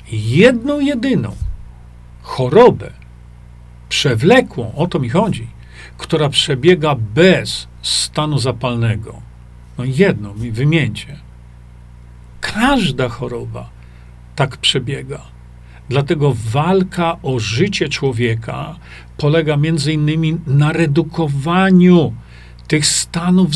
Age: 50-69